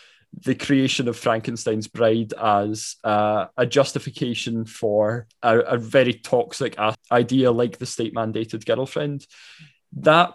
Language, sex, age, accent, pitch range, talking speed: English, male, 20-39, British, 115-140 Hz, 130 wpm